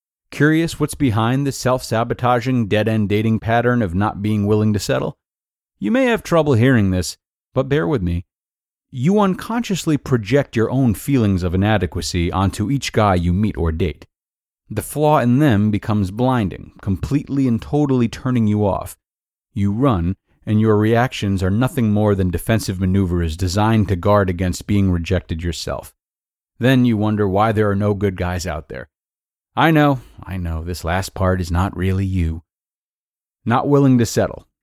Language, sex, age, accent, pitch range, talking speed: English, male, 40-59, American, 95-130 Hz, 165 wpm